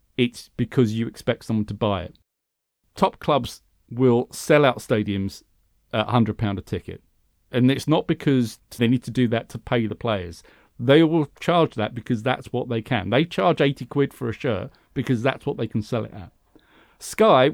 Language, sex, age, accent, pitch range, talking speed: English, male, 40-59, British, 110-130 Hz, 190 wpm